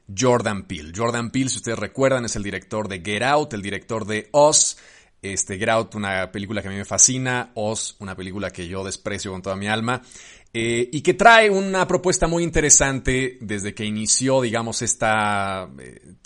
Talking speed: 190 wpm